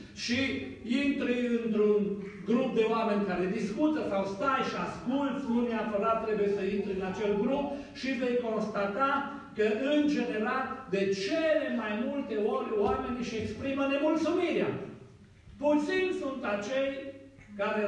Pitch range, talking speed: 165-235 Hz, 130 wpm